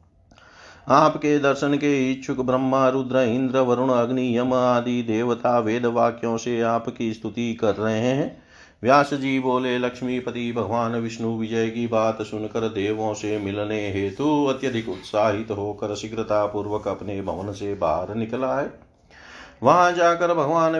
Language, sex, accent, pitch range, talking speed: Hindi, male, native, 105-135 Hz, 140 wpm